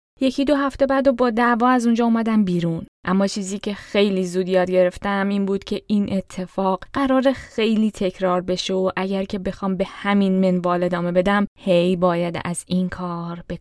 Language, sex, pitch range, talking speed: Persian, female, 185-225 Hz, 185 wpm